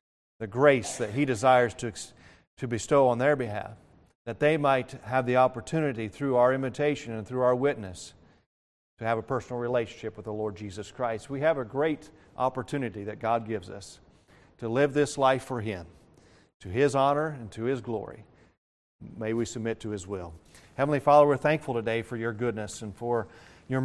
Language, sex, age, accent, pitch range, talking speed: English, male, 40-59, American, 110-135 Hz, 185 wpm